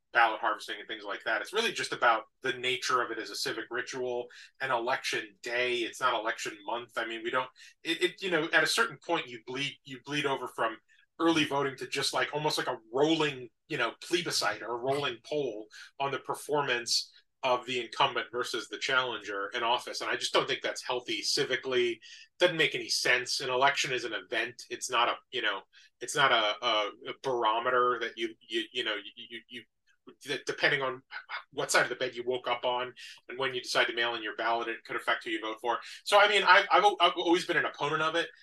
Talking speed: 225 wpm